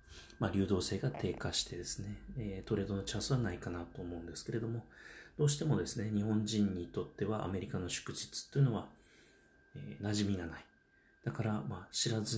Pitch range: 90-125 Hz